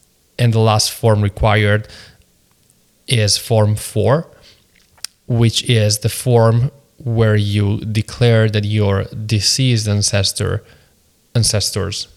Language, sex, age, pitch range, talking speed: English, male, 20-39, 100-115 Hz, 100 wpm